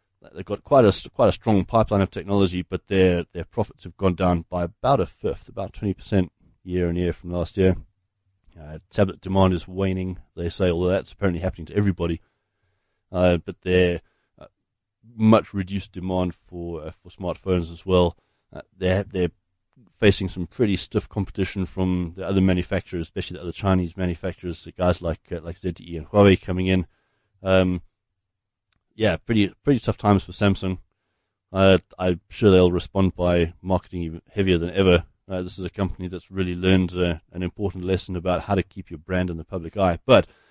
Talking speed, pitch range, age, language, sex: 185 wpm, 90-100 Hz, 30-49, English, male